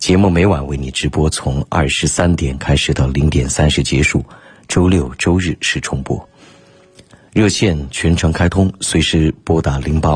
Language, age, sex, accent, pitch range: Chinese, 50-69, male, native, 70-90 Hz